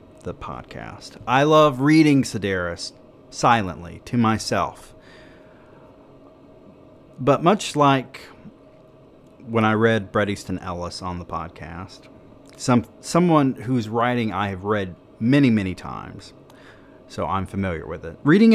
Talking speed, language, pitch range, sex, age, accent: 120 wpm, English, 100-140 Hz, male, 30-49, American